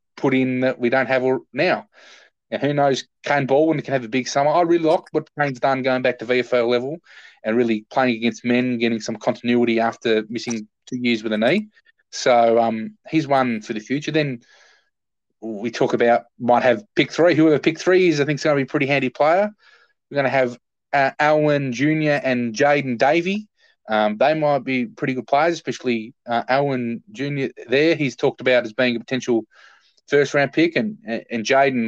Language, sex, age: English, male, 20-39